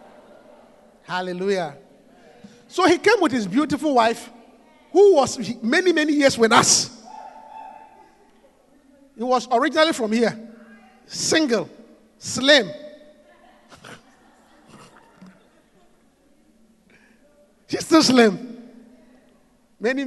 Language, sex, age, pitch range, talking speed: English, male, 50-69, 225-290 Hz, 80 wpm